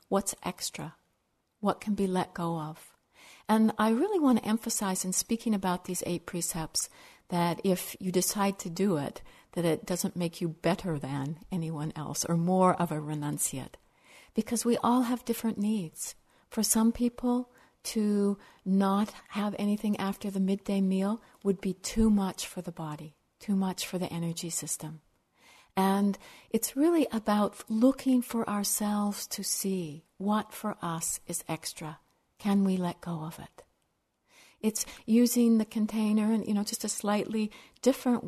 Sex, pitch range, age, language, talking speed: female, 180-220 Hz, 60-79, English, 160 wpm